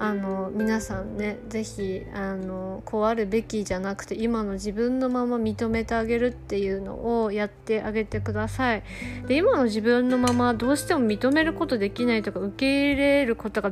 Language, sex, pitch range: Japanese, female, 200-250 Hz